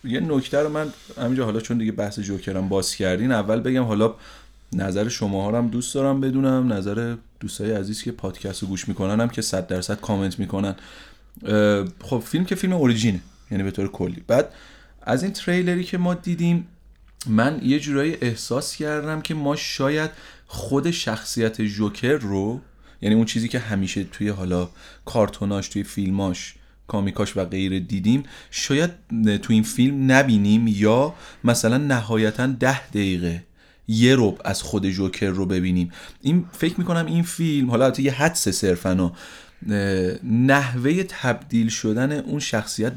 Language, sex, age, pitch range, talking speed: Persian, male, 30-49, 100-135 Hz, 150 wpm